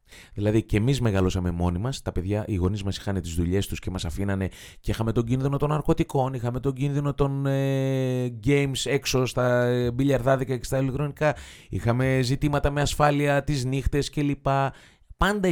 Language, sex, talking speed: Greek, male, 175 wpm